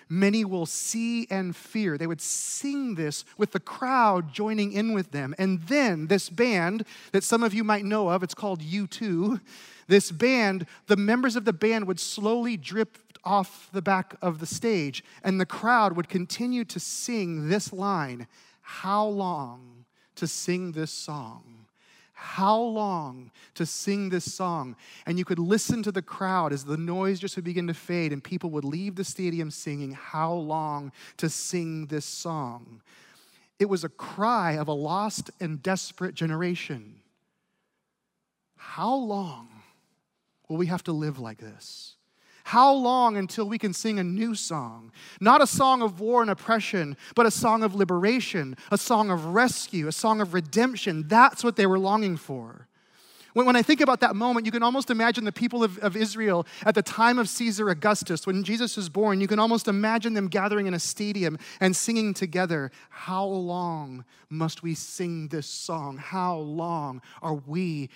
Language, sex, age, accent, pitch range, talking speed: English, male, 30-49, American, 165-220 Hz, 175 wpm